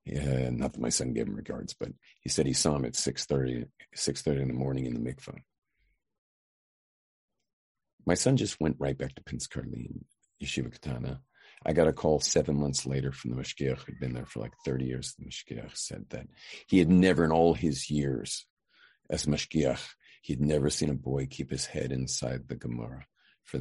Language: English